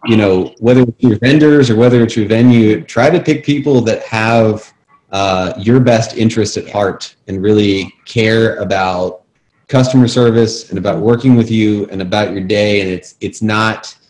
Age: 30-49